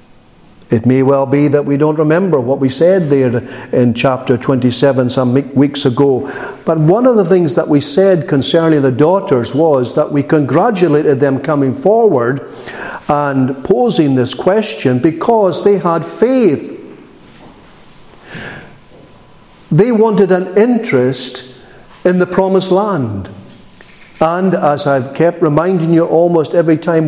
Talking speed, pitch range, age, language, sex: 135 wpm, 140-195 Hz, 50-69, English, male